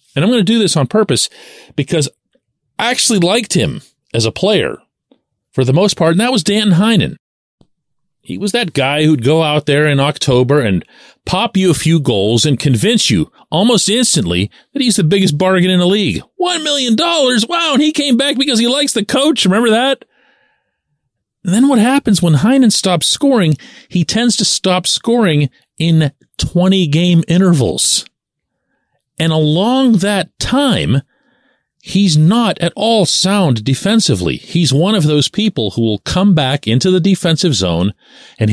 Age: 40-59